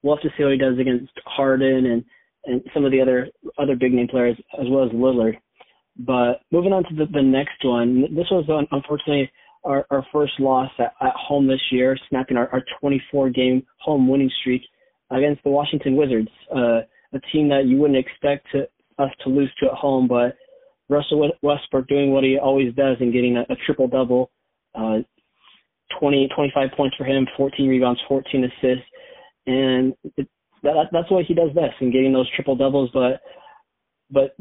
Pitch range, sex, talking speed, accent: 130-145 Hz, male, 185 wpm, American